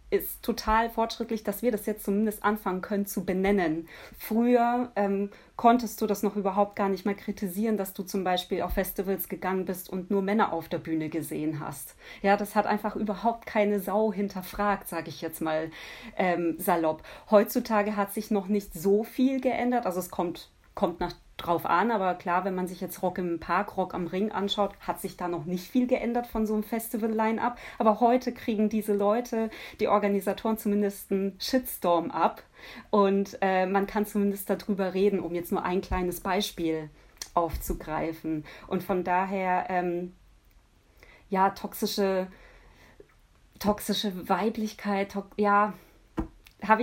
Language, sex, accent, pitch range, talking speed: German, female, German, 180-215 Hz, 165 wpm